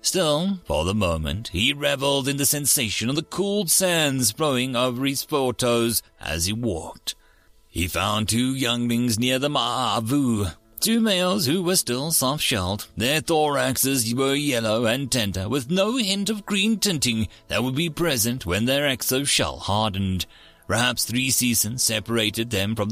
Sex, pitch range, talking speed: male, 110-145 Hz, 155 wpm